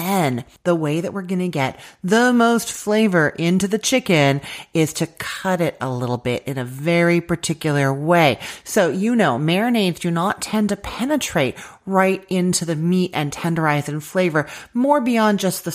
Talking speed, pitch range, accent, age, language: 185 wpm, 150-205 Hz, American, 30-49, English